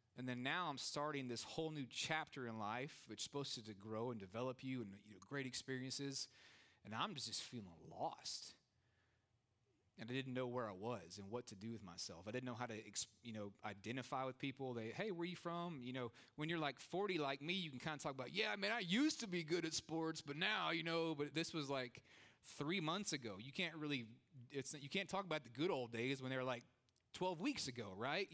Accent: American